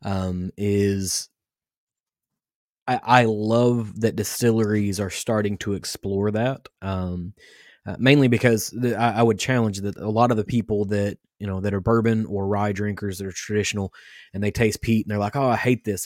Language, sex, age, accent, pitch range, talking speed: English, male, 20-39, American, 100-115 Hz, 185 wpm